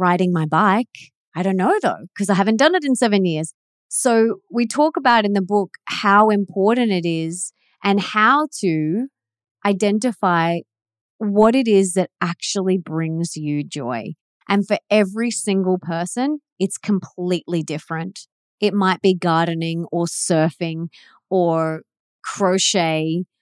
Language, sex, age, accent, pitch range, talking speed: English, female, 30-49, Australian, 170-205 Hz, 140 wpm